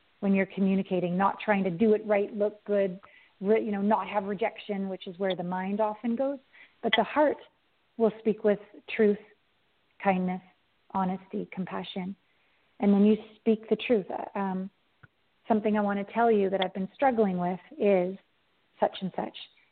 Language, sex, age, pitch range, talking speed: English, female, 40-59, 200-225 Hz, 165 wpm